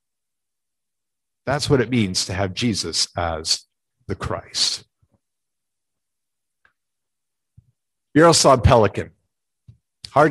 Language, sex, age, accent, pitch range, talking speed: English, male, 50-69, American, 115-160 Hz, 75 wpm